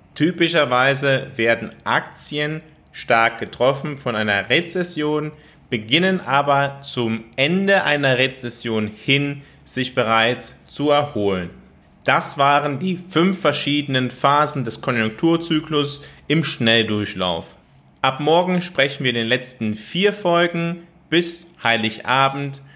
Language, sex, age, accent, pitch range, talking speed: German, male, 30-49, German, 120-155 Hz, 105 wpm